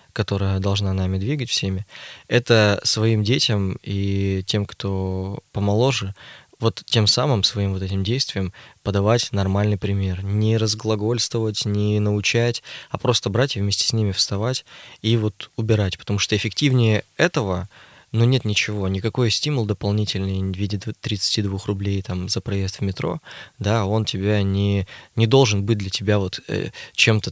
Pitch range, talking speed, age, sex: 95-115 Hz, 150 wpm, 20-39, male